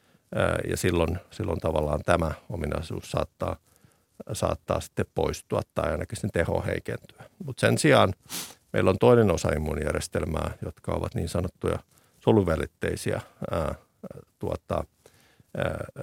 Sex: male